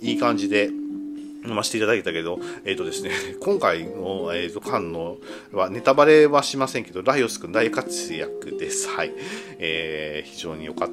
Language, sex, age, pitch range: Japanese, male, 40-59, 100-155 Hz